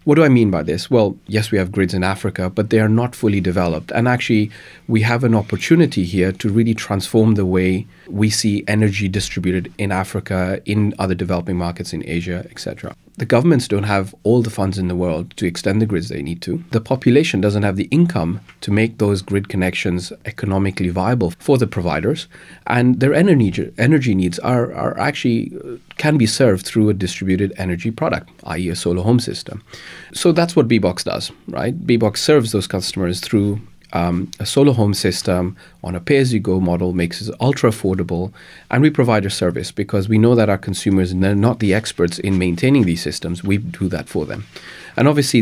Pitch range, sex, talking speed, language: 95-115 Hz, male, 195 wpm, English